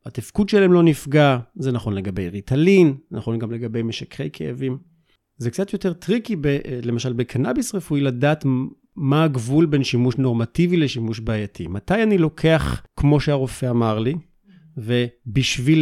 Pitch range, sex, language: 120-165 Hz, male, Hebrew